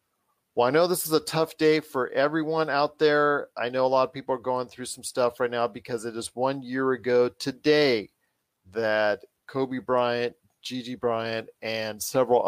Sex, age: male, 40-59